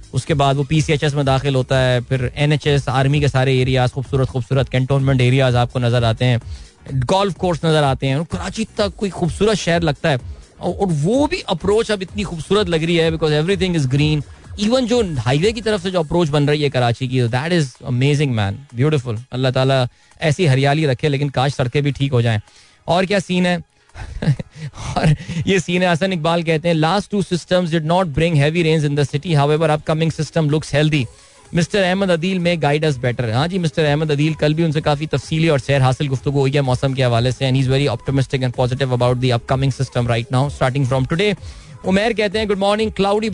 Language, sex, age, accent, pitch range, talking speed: Hindi, male, 20-39, native, 135-180 Hz, 200 wpm